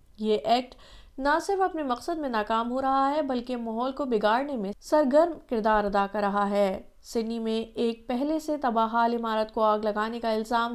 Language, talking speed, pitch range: Urdu, 195 wpm, 220-280 Hz